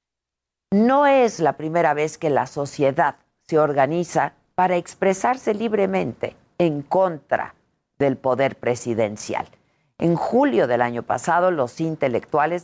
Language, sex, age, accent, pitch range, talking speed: Spanish, female, 50-69, Mexican, 145-215 Hz, 120 wpm